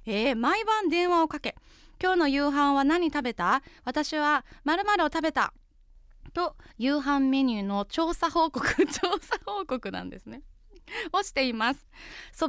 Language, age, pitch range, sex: Japanese, 20-39, 220-335 Hz, female